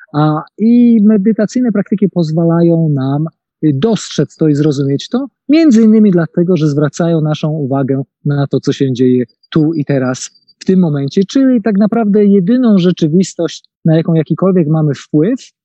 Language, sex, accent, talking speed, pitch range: Polish, male, native, 150 wpm, 160-210 Hz